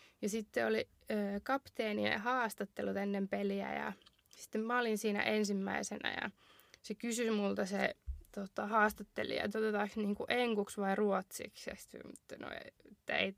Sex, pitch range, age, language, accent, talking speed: female, 205-255 Hz, 20-39, Finnish, native, 125 wpm